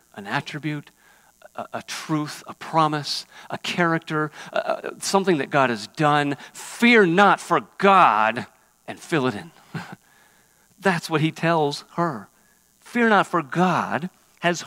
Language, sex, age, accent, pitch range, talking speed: English, male, 50-69, American, 165-225 Hz, 135 wpm